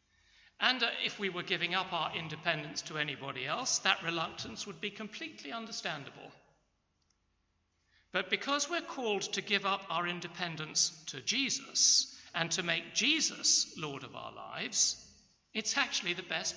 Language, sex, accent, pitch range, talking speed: English, male, British, 135-205 Hz, 145 wpm